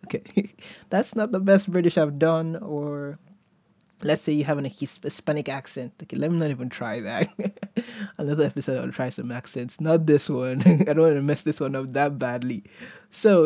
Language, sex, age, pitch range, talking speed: English, male, 20-39, 145-190 Hz, 190 wpm